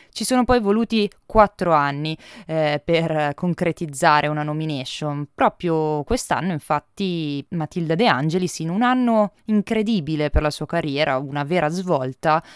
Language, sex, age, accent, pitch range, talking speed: Italian, female, 20-39, native, 150-205 Hz, 135 wpm